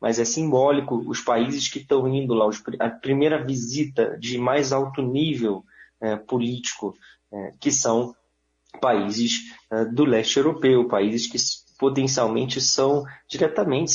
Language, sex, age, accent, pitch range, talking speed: Portuguese, male, 20-39, Brazilian, 115-150 Hz, 120 wpm